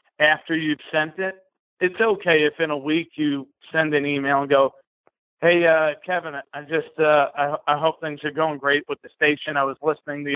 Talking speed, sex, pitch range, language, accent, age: 210 wpm, male, 135-160 Hz, English, American, 50-69